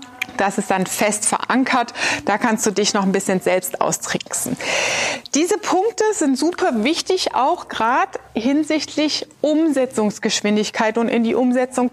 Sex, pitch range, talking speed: female, 235-315 Hz, 135 wpm